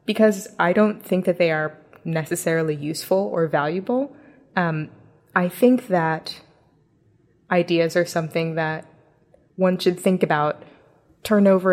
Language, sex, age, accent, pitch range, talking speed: English, female, 20-39, American, 160-190 Hz, 130 wpm